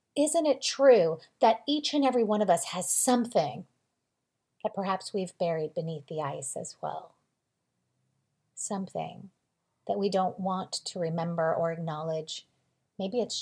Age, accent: 30-49, American